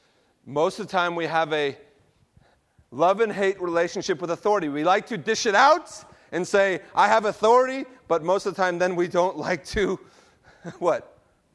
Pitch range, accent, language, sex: 150-195 Hz, American, English, male